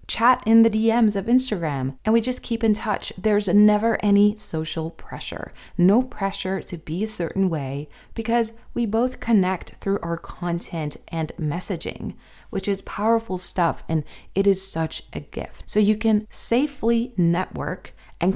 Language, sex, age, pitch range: English, female, 20-39, 180-225 Hz